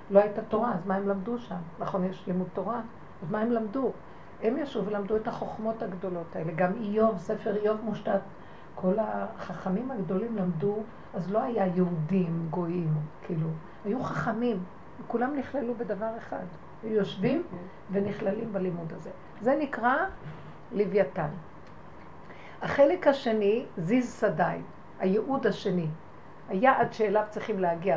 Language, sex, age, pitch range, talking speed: Hebrew, female, 50-69, 185-230 Hz, 135 wpm